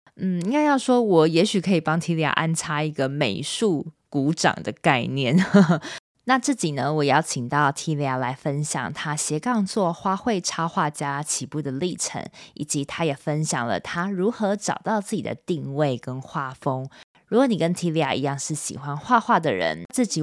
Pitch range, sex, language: 140-180 Hz, female, Chinese